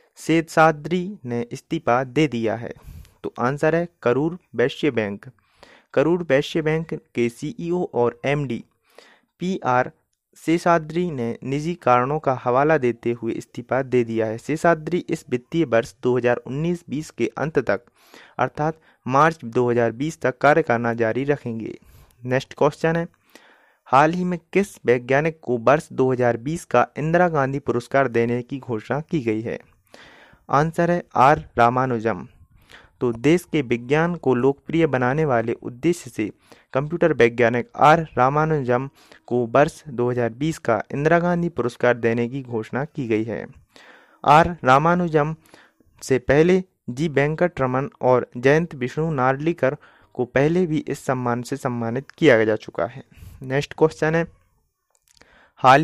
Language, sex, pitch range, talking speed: Hindi, male, 120-160 Hz, 135 wpm